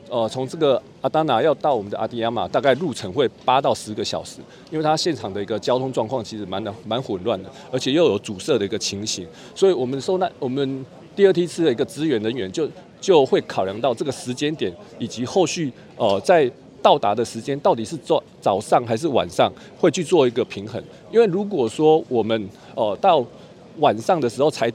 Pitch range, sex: 120-170 Hz, male